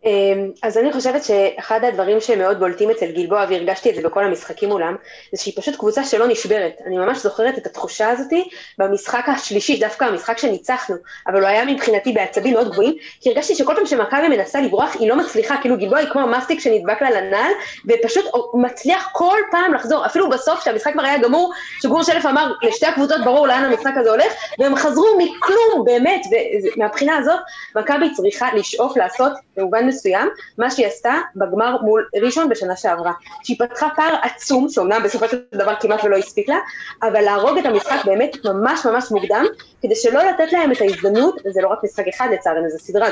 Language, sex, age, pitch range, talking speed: Hebrew, female, 20-39, 210-300 Hz, 160 wpm